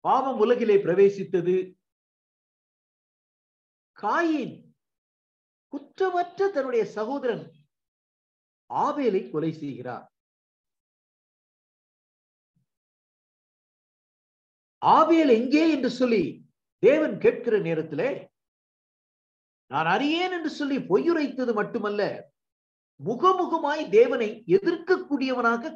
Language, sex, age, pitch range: Tamil, male, 50-69, 185-310 Hz